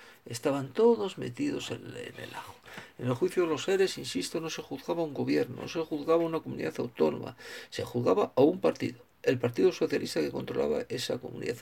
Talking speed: 190 wpm